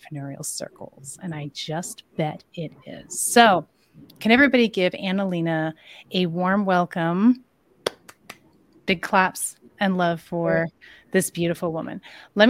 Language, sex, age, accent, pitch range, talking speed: English, female, 30-49, American, 170-225 Hz, 120 wpm